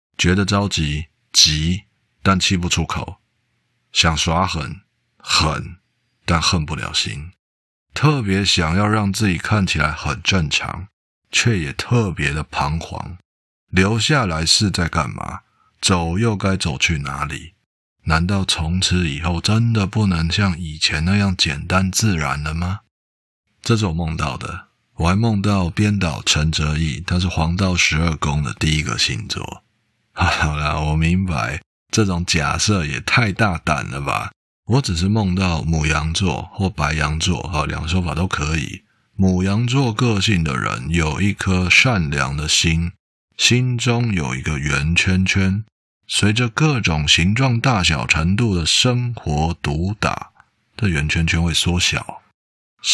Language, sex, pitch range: Chinese, male, 80-100 Hz